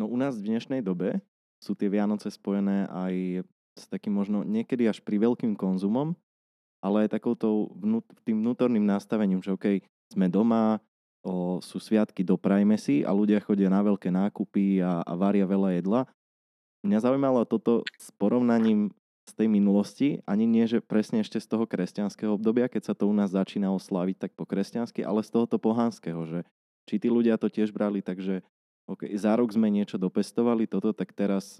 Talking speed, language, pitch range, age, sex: 180 wpm, Slovak, 95-110 Hz, 20-39, male